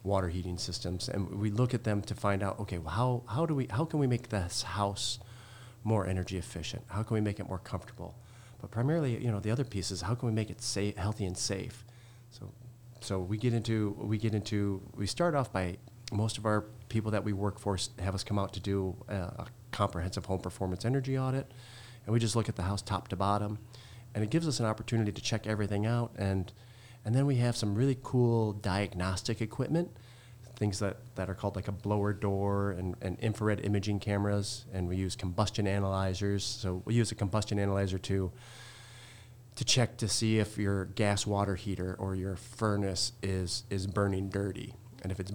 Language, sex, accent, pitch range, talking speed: English, male, American, 100-120 Hz, 210 wpm